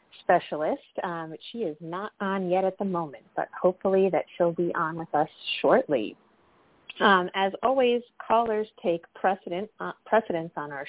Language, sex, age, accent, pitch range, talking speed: English, female, 30-49, American, 160-215 Hz, 160 wpm